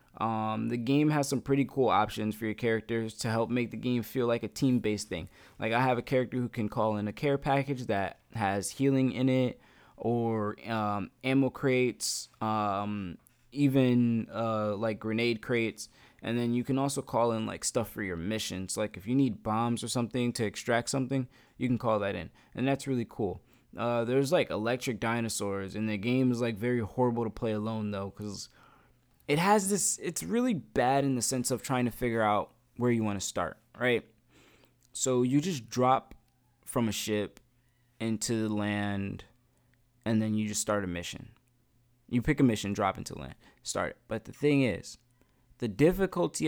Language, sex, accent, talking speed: English, male, American, 190 wpm